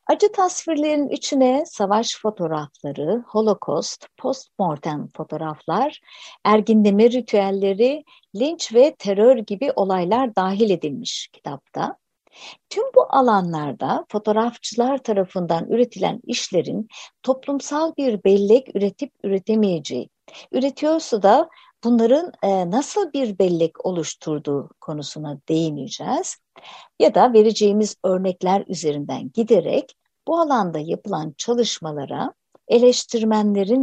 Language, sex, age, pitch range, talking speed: Turkish, female, 60-79, 175-260 Hz, 90 wpm